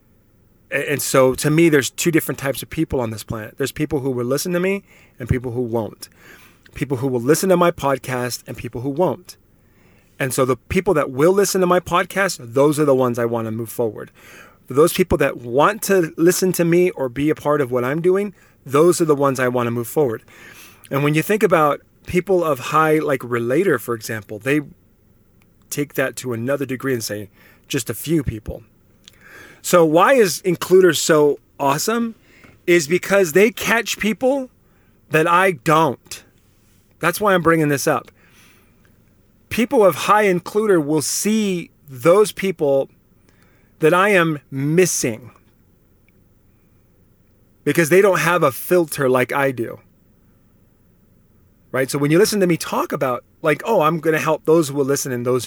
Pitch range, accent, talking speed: 115-175 Hz, American, 175 wpm